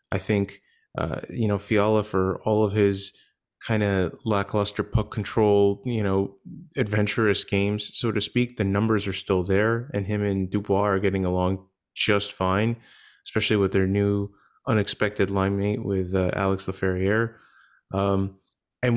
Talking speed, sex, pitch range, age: 150 wpm, male, 95-110 Hz, 20-39